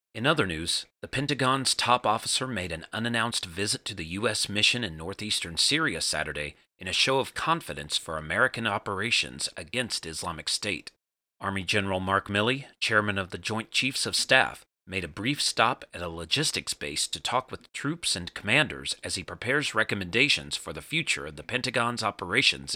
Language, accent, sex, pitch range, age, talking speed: English, American, male, 90-125 Hz, 30-49, 175 wpm